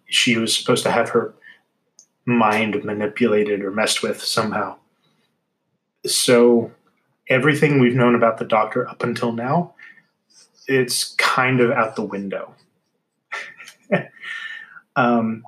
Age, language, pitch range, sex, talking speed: 30-49, English, 110-130 Hz, male, 110 wpm